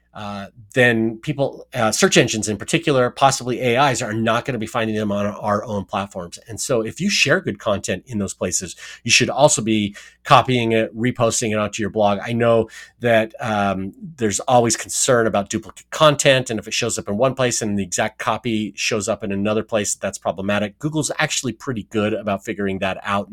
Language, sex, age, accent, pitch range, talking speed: English, male, 30-49, American, 95-120 Hz, 205 wpm